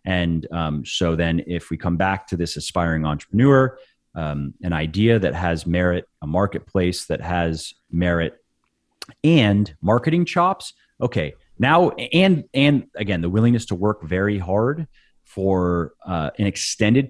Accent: American